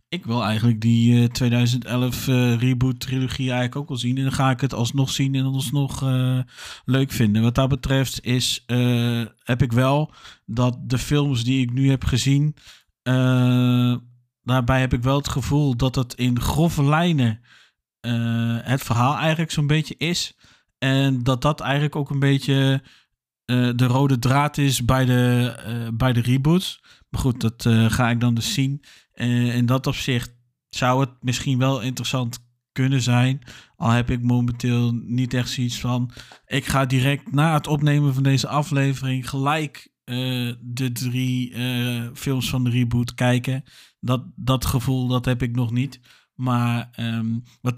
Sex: male